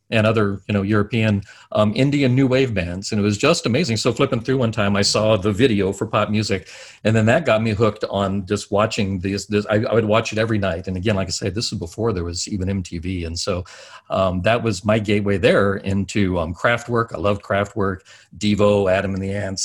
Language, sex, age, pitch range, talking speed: English, male, 50-69, 100-115 Hz, 230 wpm